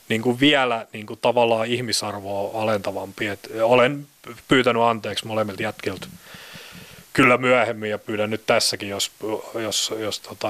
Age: 30-49